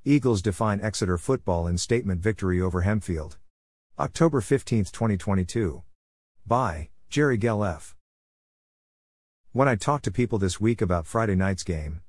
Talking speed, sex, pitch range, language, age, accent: 130 wpm, male, 90-115 Hz, English, 50-69, American